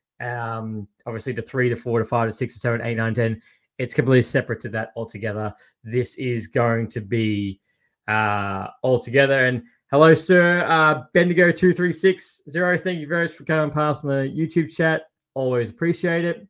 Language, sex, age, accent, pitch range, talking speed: English, male, 20-39, Australian, 140-215 Hz, 185 wpm